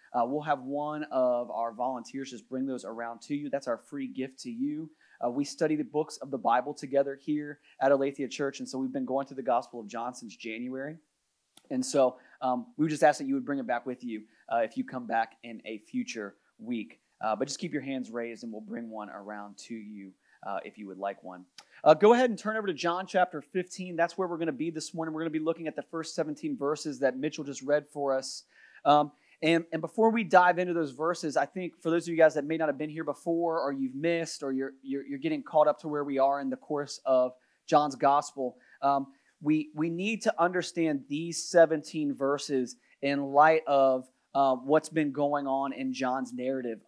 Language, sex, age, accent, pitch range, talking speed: English, male, 30-49, American, 130-160 Hz, 235 wpm